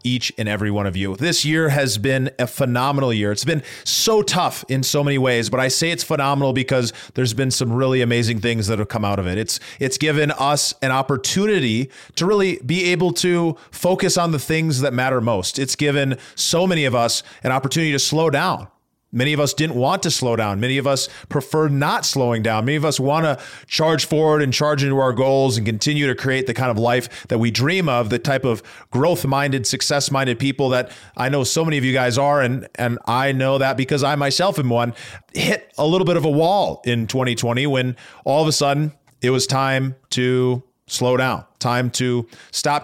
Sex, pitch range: male, 125-155 Hz